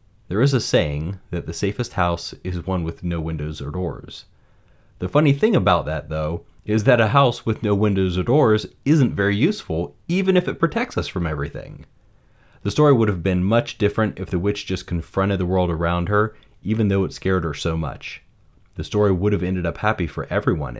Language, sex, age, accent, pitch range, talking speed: English, male, 30-49, American, 85-110 Hz, 210 wpm